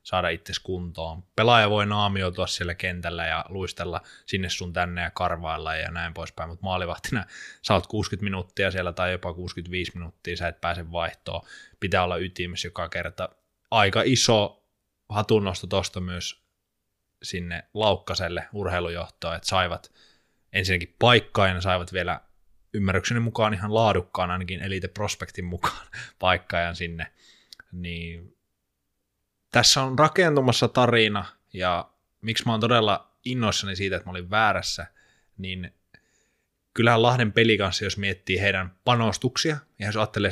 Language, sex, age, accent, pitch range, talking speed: Finnish, male, 20-39, native, 90-105 Hz, 130 wpm